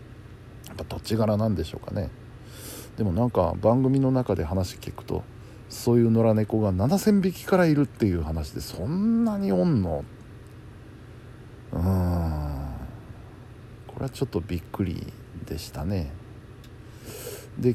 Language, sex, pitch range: Japanese, male, 100-120 Hz